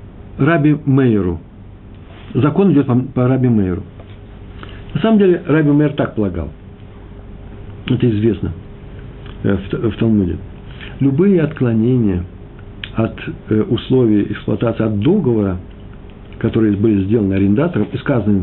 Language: Russian